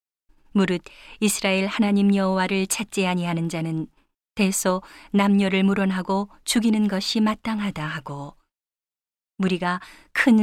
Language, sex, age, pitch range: Korean, female, 40-59, 180-210 Hz